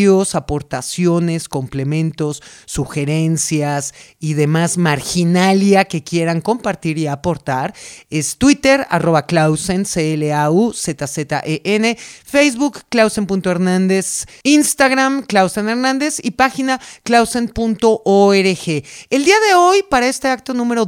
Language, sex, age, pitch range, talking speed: Spanish, male, 30-49, 160-235 Hz, 85 wpm